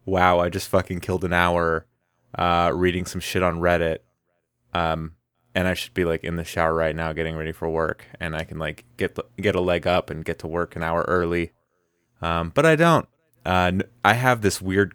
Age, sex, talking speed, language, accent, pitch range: 30-49, male, 215 wpm, English, American, 90-120 Hz